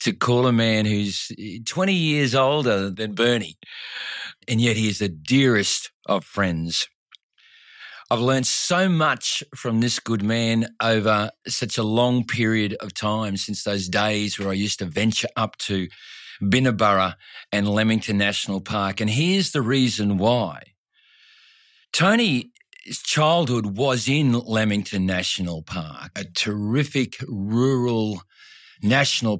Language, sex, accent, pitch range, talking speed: English, male, Australian, 100-130 Hz, 130 wpm